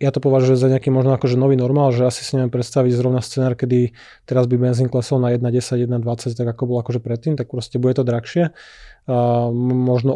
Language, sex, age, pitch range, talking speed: Slovak, male, 20-39, 125-130 Hz, 205 wpm